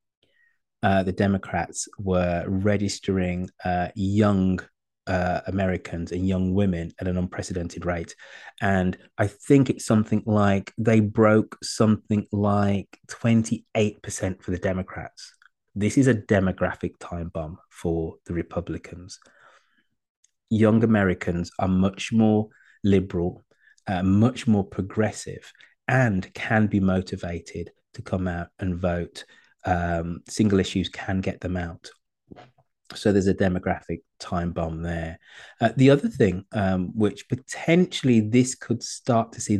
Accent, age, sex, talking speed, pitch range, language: British, 30-49, male, 125 wpm, 90-110 Hz, English